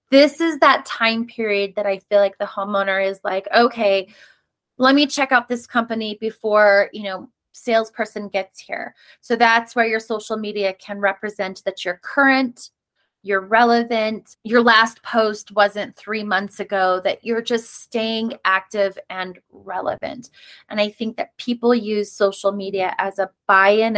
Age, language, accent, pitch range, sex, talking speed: 20-39, English, American, 200-235 Hz, female, 160 wpm